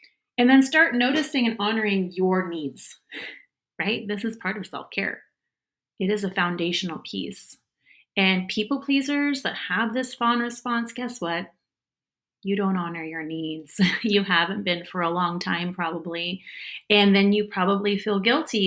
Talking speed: 155 wpm